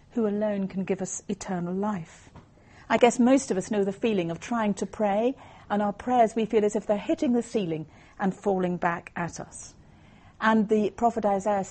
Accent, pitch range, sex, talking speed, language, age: British, 170-250 Hz, female, 200 wpm, English, 50-69